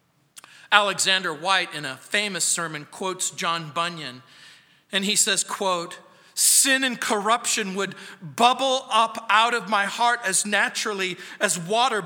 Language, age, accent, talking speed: English, 40-59, American, 135 wpm